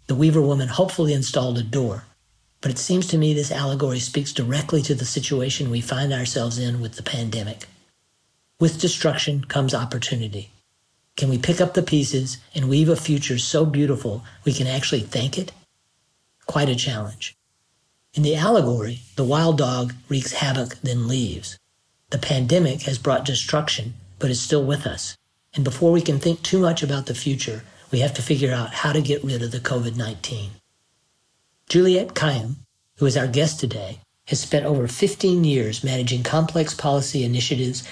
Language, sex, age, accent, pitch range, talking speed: English, male, 50-69, American, 120-150 Hz, 170 wpm